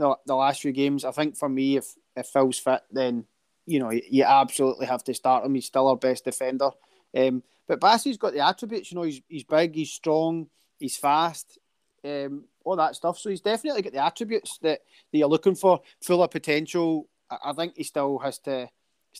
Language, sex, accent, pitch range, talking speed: English, male, British, 135-155 Hz, 215 wpm